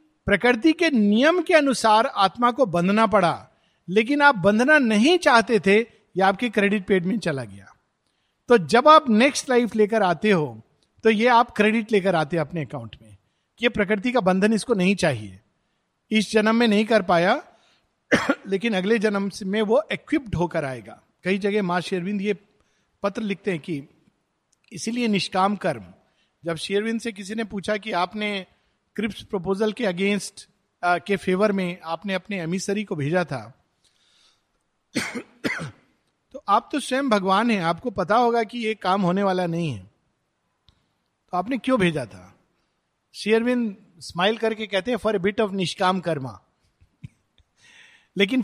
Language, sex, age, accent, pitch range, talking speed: Hindi, male, 50-69, native, 175-235 Hz, 125 wpm